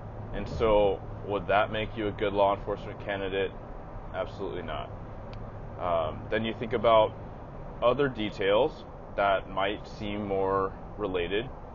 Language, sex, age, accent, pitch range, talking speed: English, male, 20-39, American, 95-120 Hz, 130 wpm